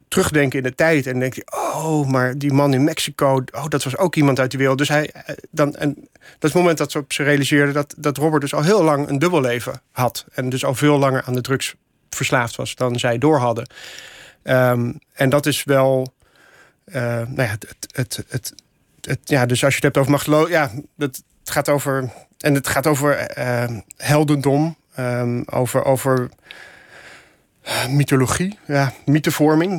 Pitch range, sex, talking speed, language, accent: 130-150 Hz, male, 195 wpm, Dutch, Dutch